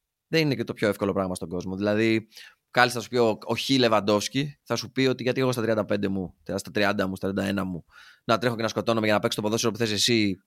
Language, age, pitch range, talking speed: Greek, 20-39, 105-140 Hz, 260 wpm